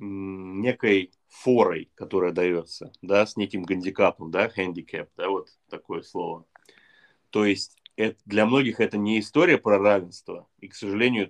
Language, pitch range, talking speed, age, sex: Russian, 95-115 Hz, 140 wpm, 20-39, male